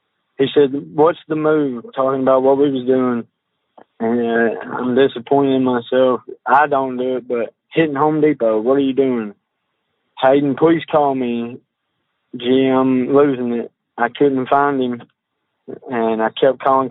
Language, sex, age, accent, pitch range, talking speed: English, male, 20-39, American, 120-135 Hz, 160 wpm